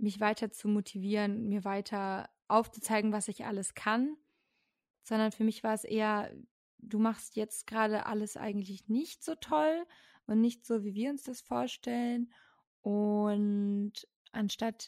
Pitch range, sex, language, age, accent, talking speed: 200-230 Hz, female, German, 20-39, German, 145 wpm